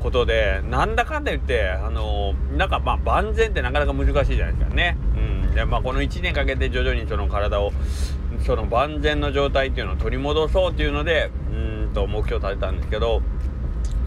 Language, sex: Japanese, male